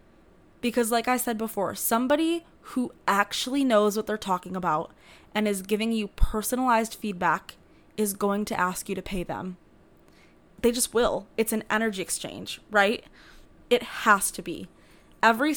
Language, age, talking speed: English, 10-29, 155 wpm